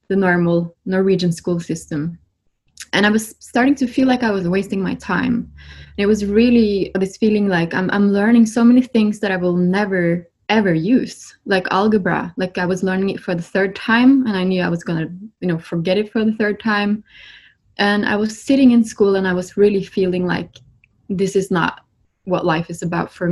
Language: English